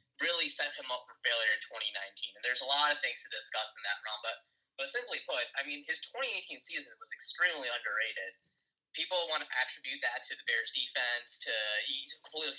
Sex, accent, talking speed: male, American, 210 wpm